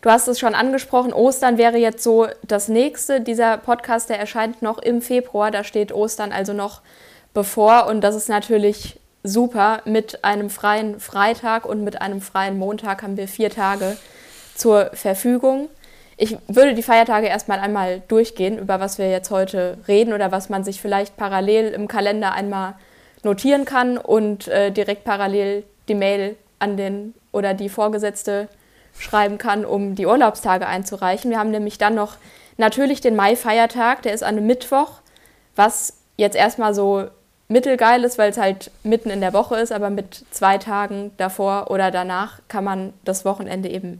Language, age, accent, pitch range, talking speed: German, 20-39, German, 200-230 Hz, 170 wpm